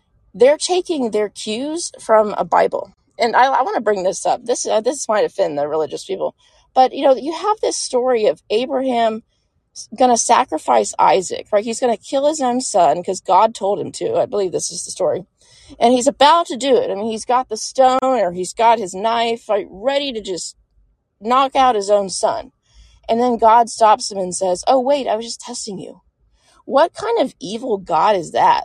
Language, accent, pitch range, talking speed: English, American, 205-285 Hz, 215 wpm